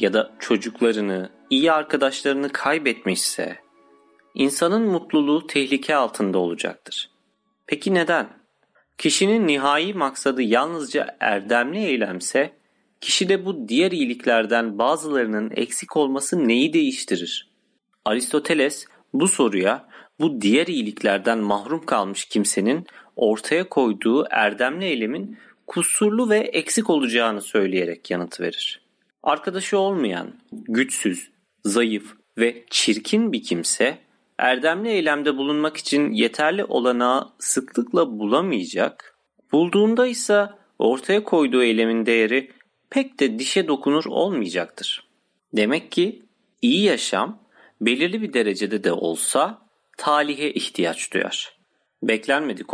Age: 40-59